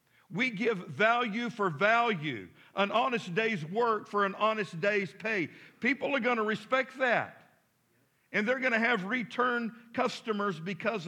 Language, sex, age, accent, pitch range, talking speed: English, male, 50-69, American, 150-220 Hz, 150 wpm